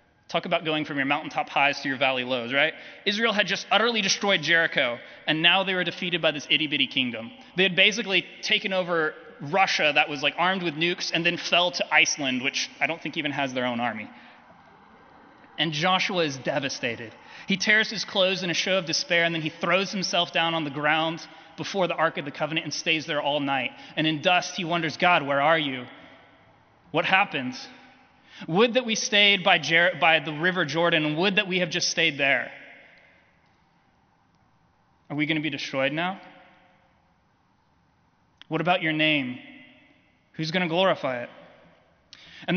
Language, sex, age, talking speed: English, male, 20-39, 185 wpm